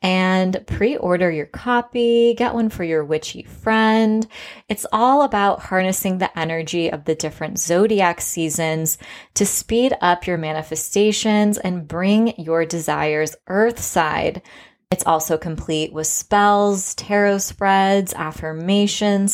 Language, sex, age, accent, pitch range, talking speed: English, female, 20-39, American, 160-205 Hz, 120 wpm